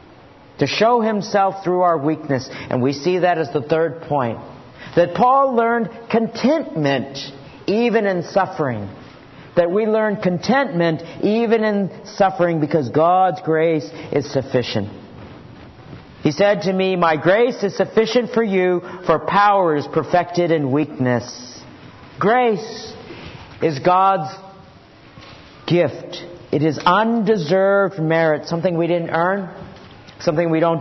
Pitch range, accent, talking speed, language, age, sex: 160-220 Hz, American, 125 wpm, English, 50-69, male